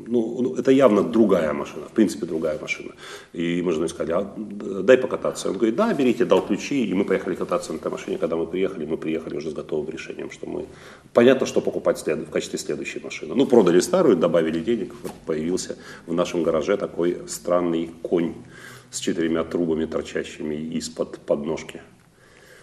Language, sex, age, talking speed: Russian, male, 40-59, 180 wpm